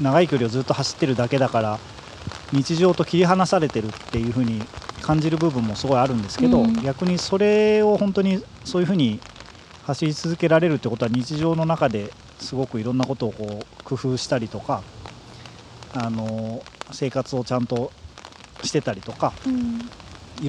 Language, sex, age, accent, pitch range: Japanese, male, 40-59, native, 120-165 Hz